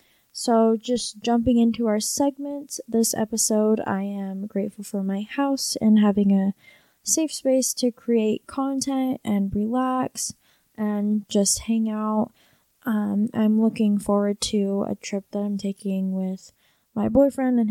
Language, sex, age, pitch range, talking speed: English, female, 20-39, 205-240 Hz, 140 wpm